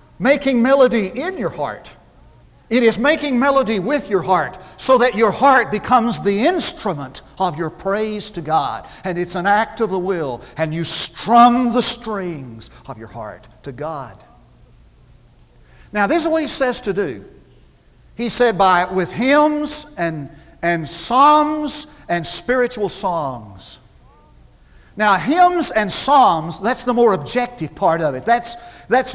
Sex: male